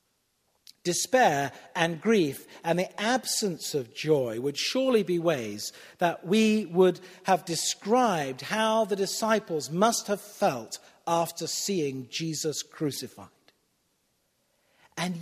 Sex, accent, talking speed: male, British, 110 wpm